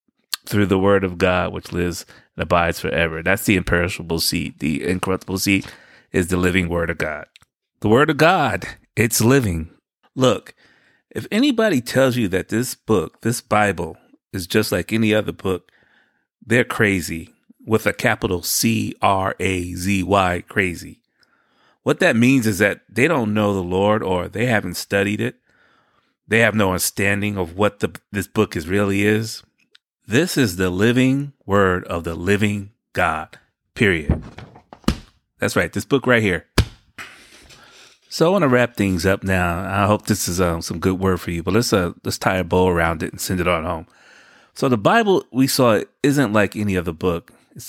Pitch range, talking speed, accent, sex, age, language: 90-115 Hz, 175 wpm, American, male, 30-49, English